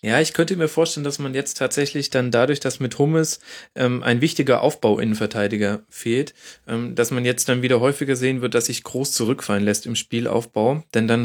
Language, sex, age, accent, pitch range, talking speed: German, male, 30-49, German, 110-130 Hz, 195 wpm